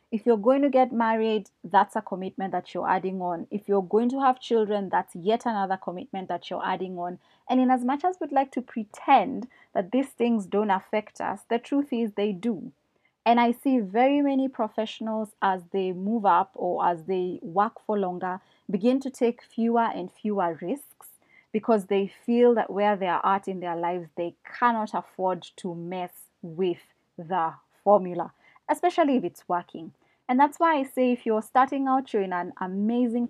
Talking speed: 190 wpm